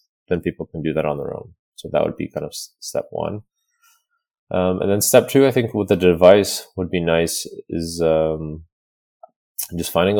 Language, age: English, 30-49